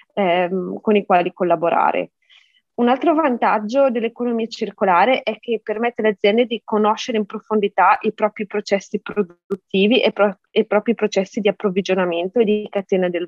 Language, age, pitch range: Italian, 20-39, 195-235 Hz